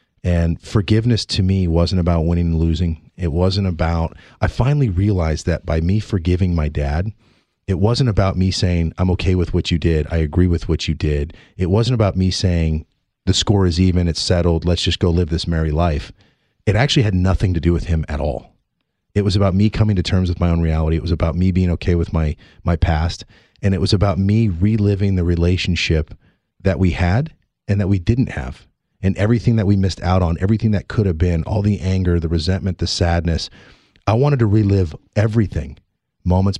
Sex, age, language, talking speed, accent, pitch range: male, 30-49, English, 210 wpm, American, 85-100 Hz